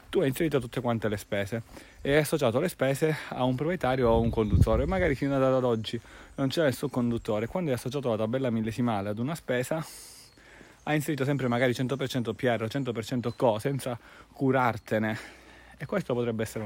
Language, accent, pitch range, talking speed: Italian, native, 110-140 Hz, 185 wpm